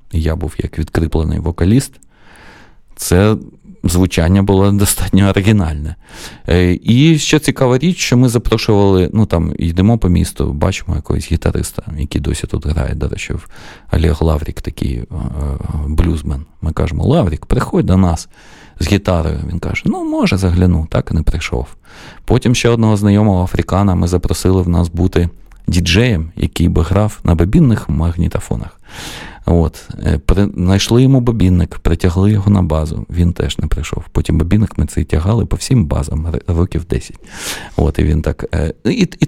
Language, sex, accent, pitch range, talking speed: Ukrainian, male, native, 80-105 Hz, 150 wpm